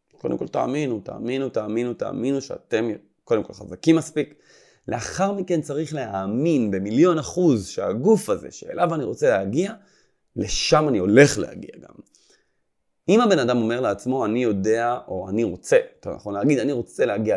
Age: 30-49